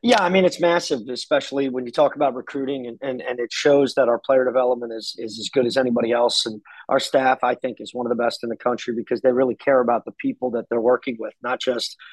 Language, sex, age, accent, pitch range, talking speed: English, male, 30-49, American, 125-135 Hz, 260 wpm